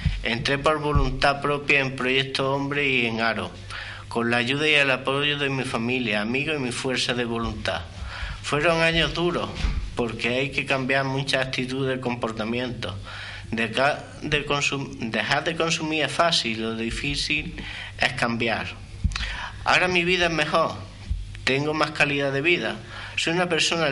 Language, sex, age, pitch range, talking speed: Spanish, male, 50-69, 110-140 Hz, 155 wpm